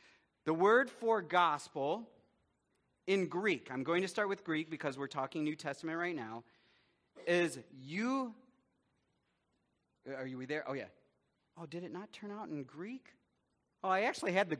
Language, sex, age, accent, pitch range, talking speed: English, male, 40-59, American, 150-215 Hz, 160 wpm